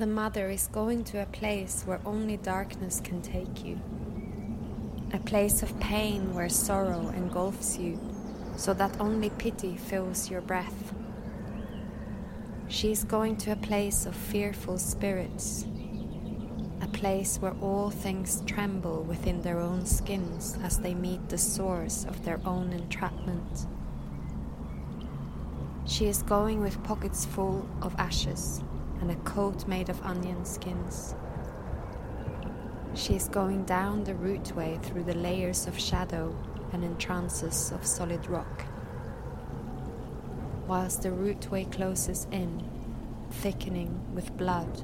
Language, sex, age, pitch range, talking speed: English, female, 20-39, 180-205 Hz, 125 wpm